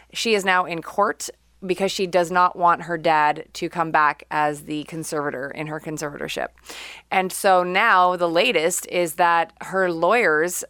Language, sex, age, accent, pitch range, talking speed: English, female, 30-49, American, 160-185 Hz, 170 wpm